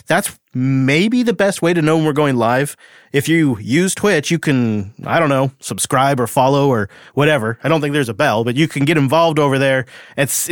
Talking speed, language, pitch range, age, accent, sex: 210 wpm, English, 125-160 Hz, 30-49, American, male